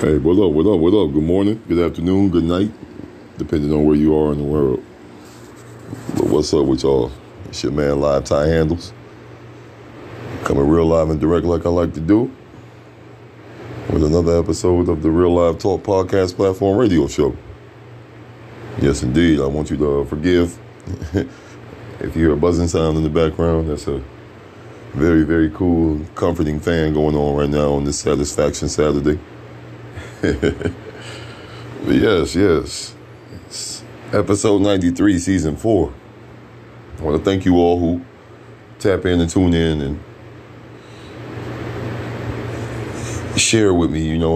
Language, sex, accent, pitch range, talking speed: English, male, American, 75-90 Hz, 150 wpm